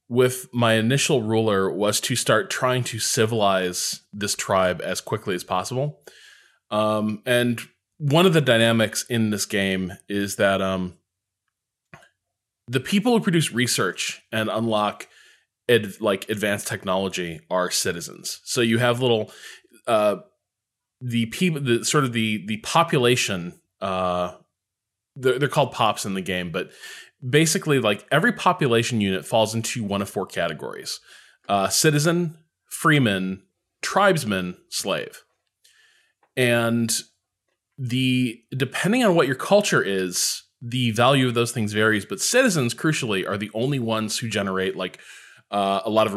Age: 20-39